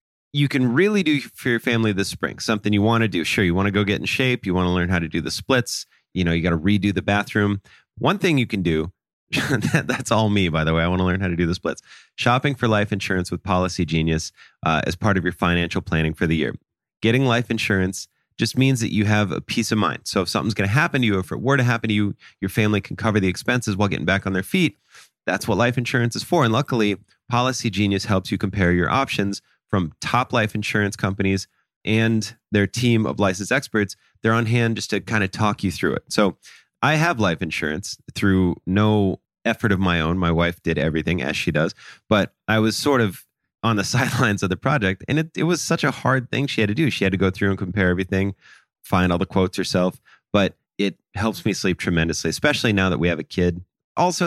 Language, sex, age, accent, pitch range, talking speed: English, male, 30-49, American, 95-120 Hz, 245 wpm